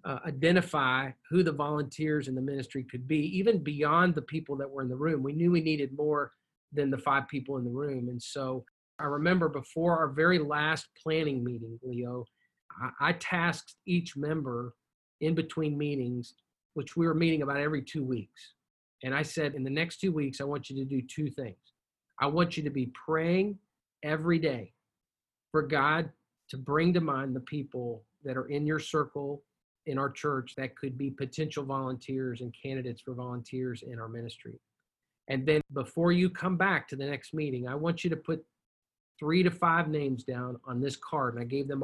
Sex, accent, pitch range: male, American, 130-160 Hz